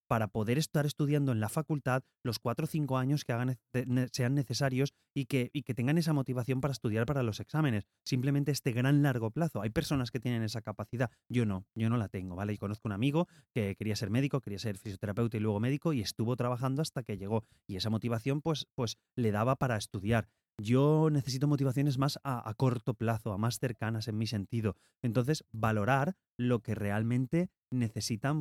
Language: Spanish